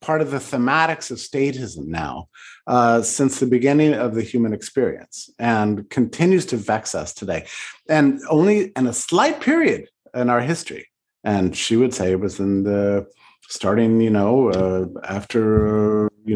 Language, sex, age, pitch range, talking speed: English, male, 50-69, 105-140 Hz, 160 wpm